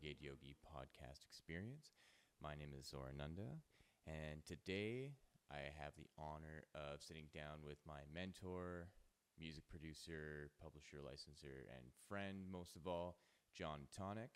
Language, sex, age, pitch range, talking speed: English, male, 30-49, 75-90 Hz, 125 wpm